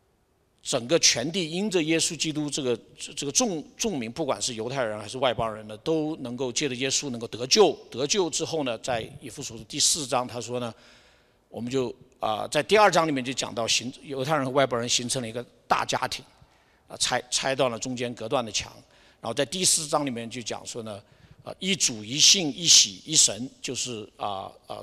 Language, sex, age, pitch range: Chinese, male, 50-69, 120-155 Hz